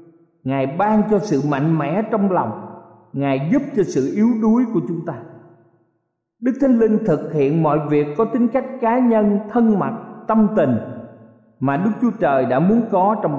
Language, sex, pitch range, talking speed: Vietnamese, male, 135-210 Hz, 185 wpm